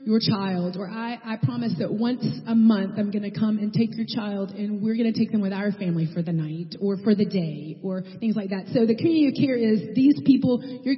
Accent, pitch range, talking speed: American, 195-235 Hz, 245 wpm